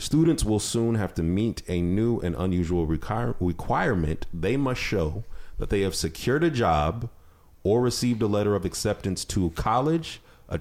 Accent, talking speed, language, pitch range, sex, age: American, 165 wpm, English, 85-120 Hz, male, 30-49